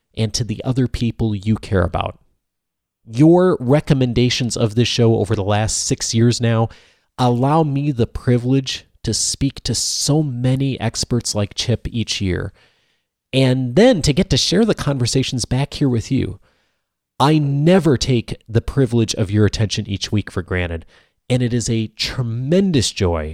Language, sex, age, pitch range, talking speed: English, male, 30-49, 100-130 Hz, 160 wpm